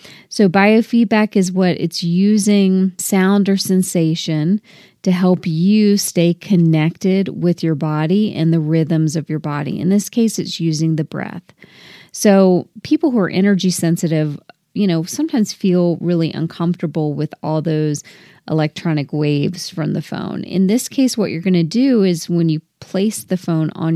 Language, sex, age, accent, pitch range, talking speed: English, female, 30-49, American, 160-200 Hz, 165 wpm